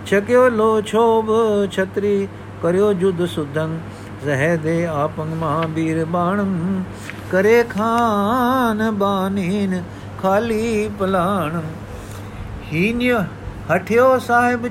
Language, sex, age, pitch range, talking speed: Punjabi, male, 50-69, 145-195 Hz, 80 wpm